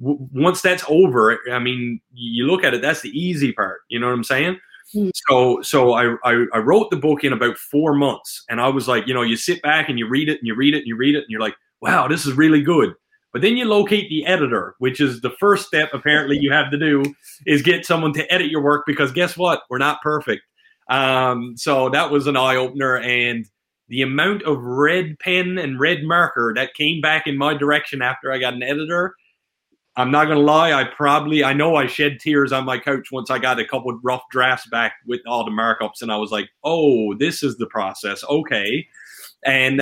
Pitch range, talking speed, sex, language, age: 125-155 Hz, 230 wpm, male, English, 30-49